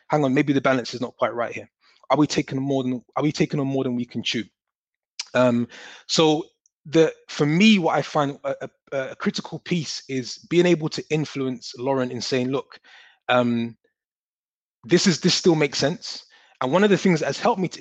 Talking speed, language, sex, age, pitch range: 210 wpm, English, male, 20-39, 125-150 Hz